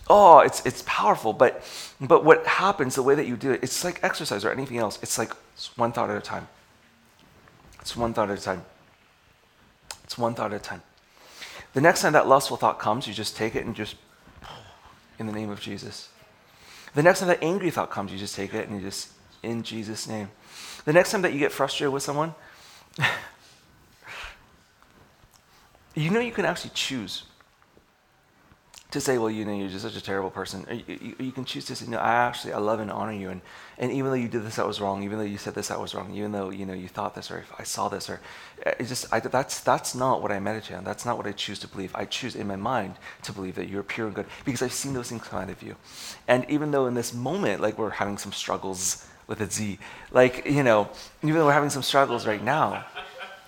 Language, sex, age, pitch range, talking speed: English, male, 30-49, 100-130 Hz, 235 wpm